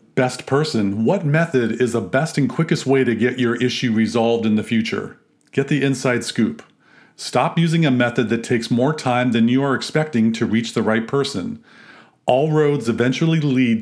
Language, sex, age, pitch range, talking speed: English, male, 40-59, 115-145 Hz, 185 wpm